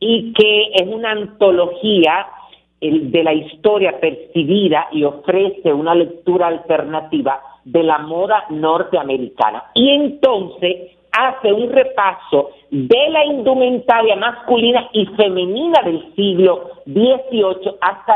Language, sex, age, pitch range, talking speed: Spanish, male, 50-69, 170-230 Hz, 110 wpm